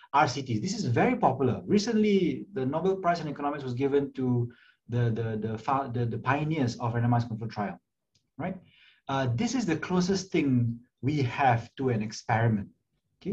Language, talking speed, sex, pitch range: English, 165 wpm, male, 120-155 Hz